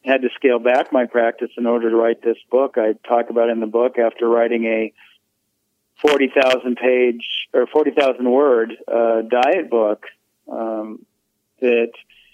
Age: 50-69